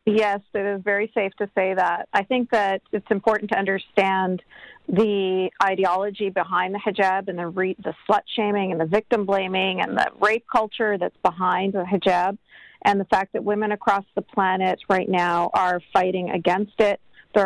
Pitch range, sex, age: 185-210 Hz, female, 40-59